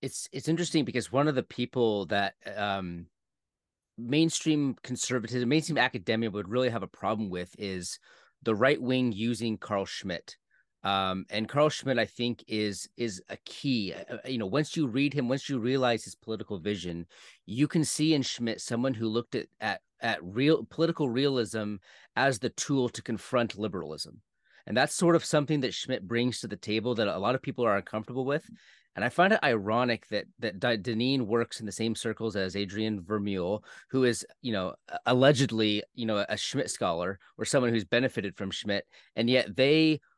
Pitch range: 105-135 Hz